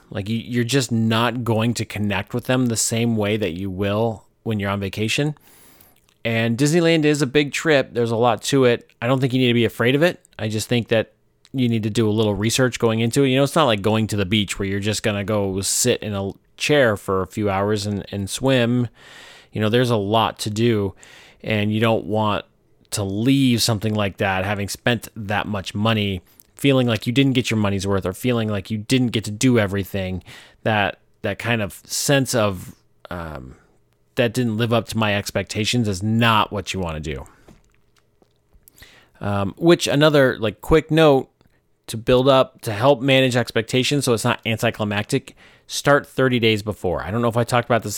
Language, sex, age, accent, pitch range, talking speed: English, male, 30-49, American, 105-125 Hz, 210 wpm